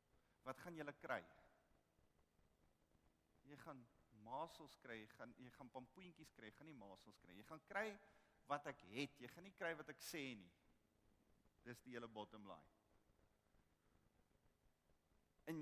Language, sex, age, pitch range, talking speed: English, male, 50-69, 115-195 Hz, 140 wpm